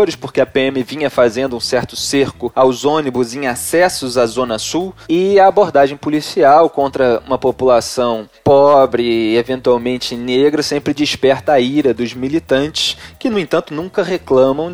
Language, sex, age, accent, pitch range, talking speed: Portuguese, male, 20-39, Brazilian, 130-175 Hz, 150 wpm